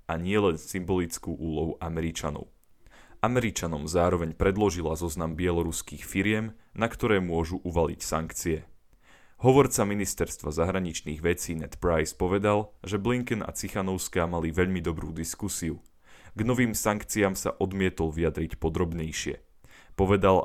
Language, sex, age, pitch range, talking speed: Slovak, male, 10-29, 80-100 Hz, 115 wpm